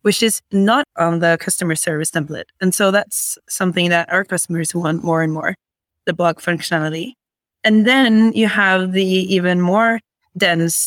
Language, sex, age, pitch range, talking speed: English, female, 20-39, 175-220 Hz, 165 wpm